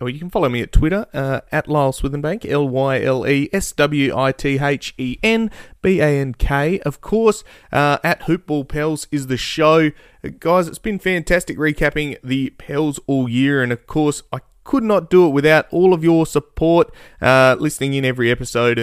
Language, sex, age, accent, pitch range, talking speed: English, male, 20-39, Australian, 120-155 Hz, 160 wpm